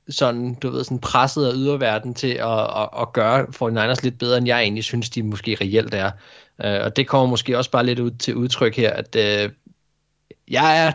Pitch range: 110-135 Hz